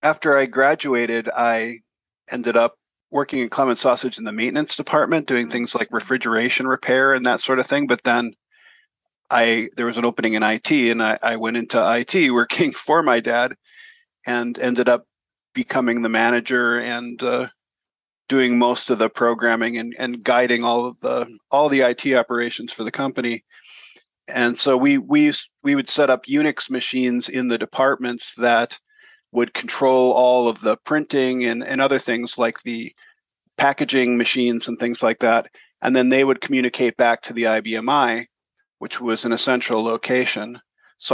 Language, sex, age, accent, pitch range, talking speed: English, male, 40-59, American, 120-130 Hz, 170 wpm